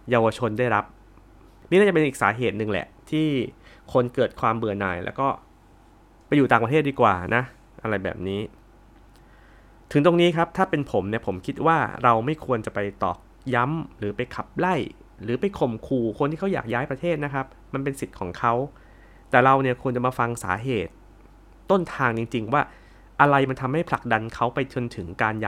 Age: 20-39